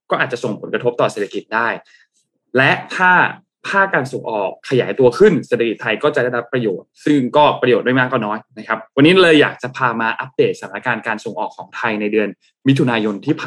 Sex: male